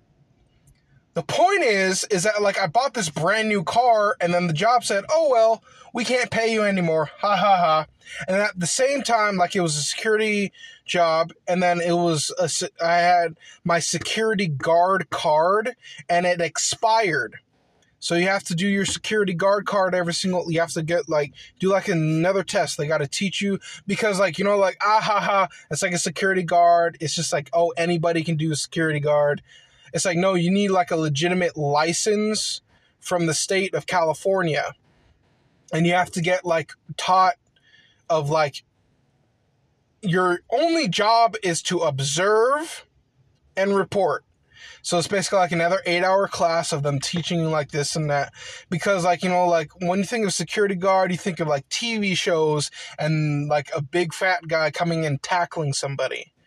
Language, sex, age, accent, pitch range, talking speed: English, male, 20-39, American, 155-195 Hz, 185 wpm